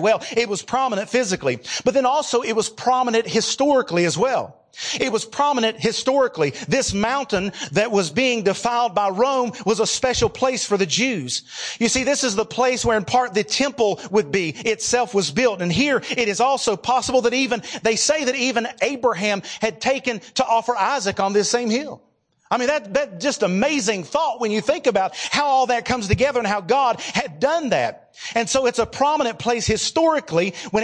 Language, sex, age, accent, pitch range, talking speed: English, male, 40-59, American, 200-250 Hz, 195 wpm